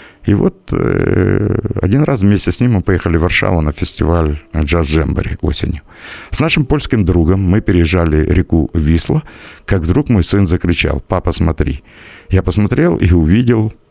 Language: Russian